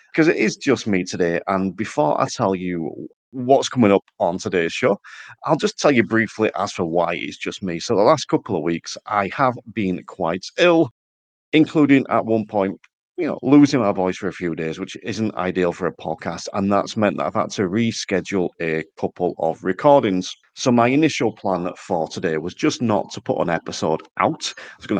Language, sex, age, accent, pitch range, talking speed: English, male, 40-59, British, 90-125 Hz, 210 wpm